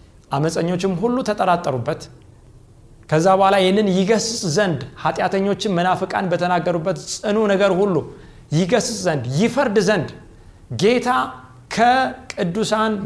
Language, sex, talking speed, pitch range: Amharic, male, 90 wpm, 120-180 Hz